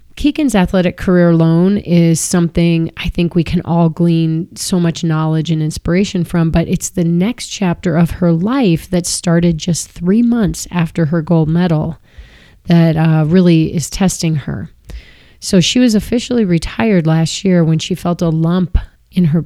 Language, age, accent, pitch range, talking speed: English, 30-49, American, 165-190 Hz, 170 wpm